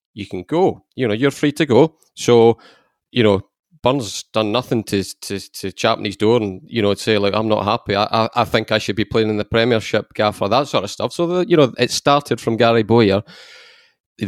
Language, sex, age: English, male, 30-49